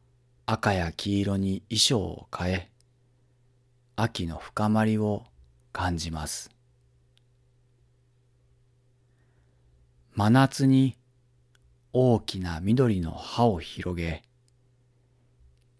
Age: 40-59